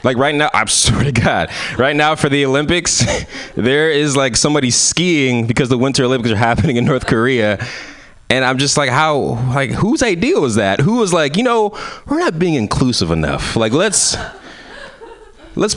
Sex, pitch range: male, 100-130 Hz